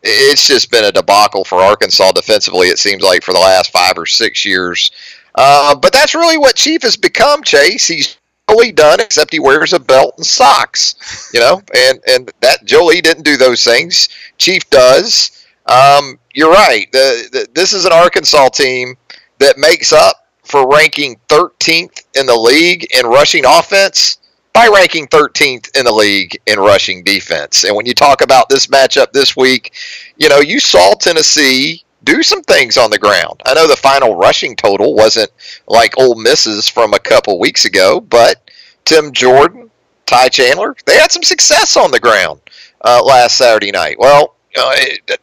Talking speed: 180 wpm